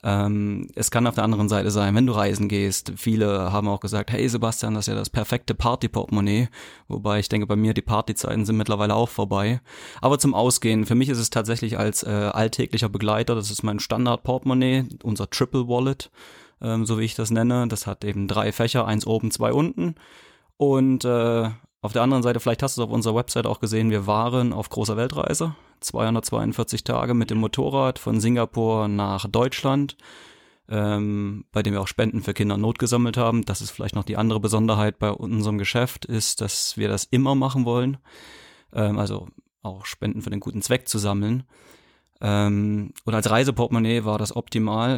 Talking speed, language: 190 wpm, German